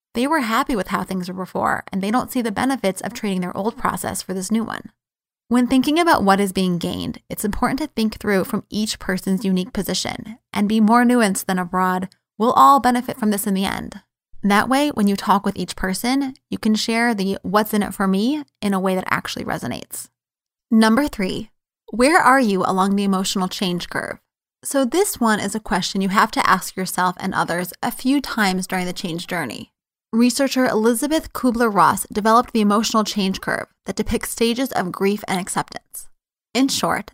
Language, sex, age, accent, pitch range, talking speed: English, female, 20-39, American, 190-235 Hz, 200 wpm